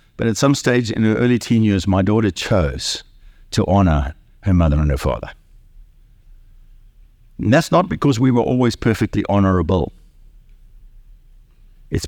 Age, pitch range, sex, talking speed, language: 60-79, 105-160 Hz, male, 145 wpm, English